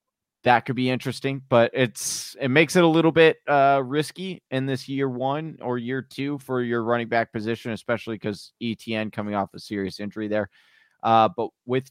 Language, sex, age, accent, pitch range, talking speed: English, male, 30-49, American, 110-140 Hz, 190 wpm